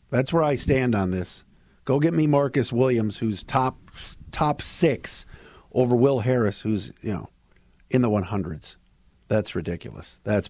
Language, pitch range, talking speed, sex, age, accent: English, 125-190 Hz, 160 wpm, male, 50-69, American